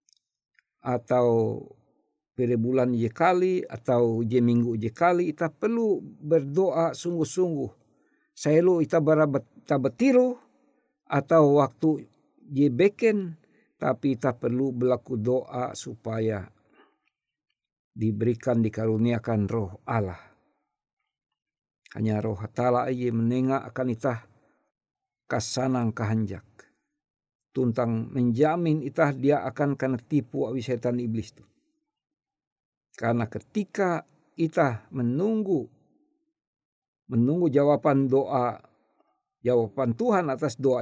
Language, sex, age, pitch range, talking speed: Indonesian, male, 50-69, 120-170 Hz, 90 wpm